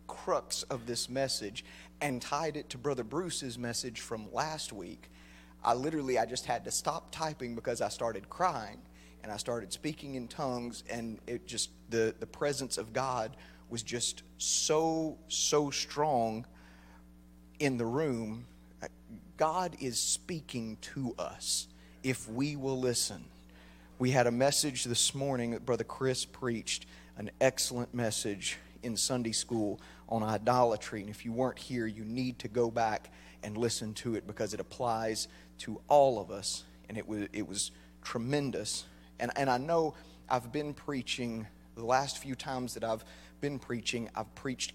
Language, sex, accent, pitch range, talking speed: English, male, American, 95-135 Hz, 160 wpm